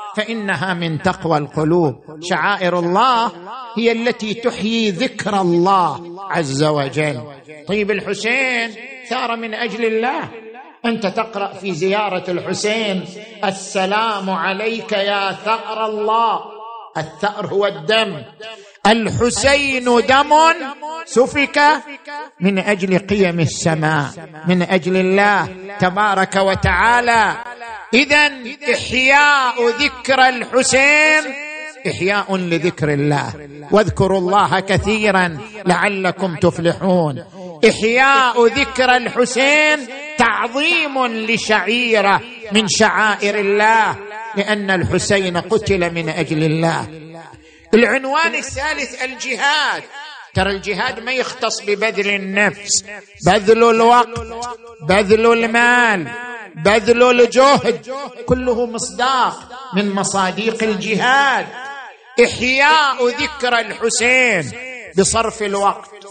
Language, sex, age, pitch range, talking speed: Arabic, male, 50-69, 190-245 Hz, 85 wpm